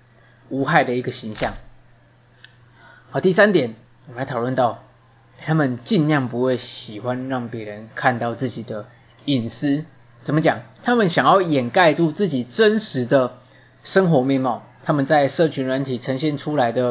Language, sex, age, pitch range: Chinese, male, 20-39, 120-150 Hz